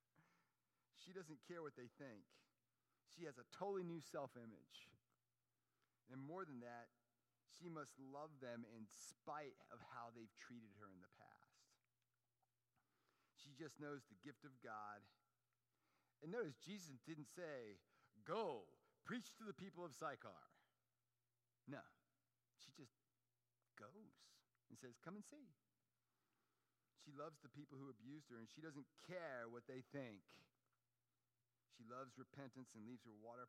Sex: male